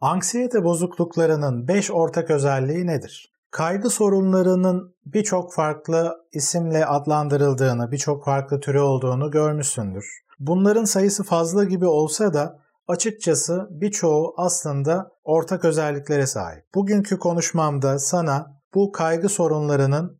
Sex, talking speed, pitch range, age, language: male, 105 wpm, 140-175 Hz, 40-59, Turkish